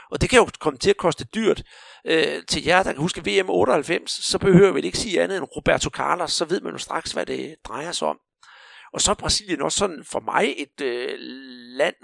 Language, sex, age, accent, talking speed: Danish, male, 60-79, native, 230 wpm